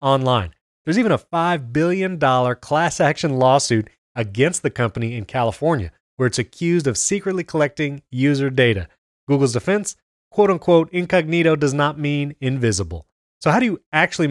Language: English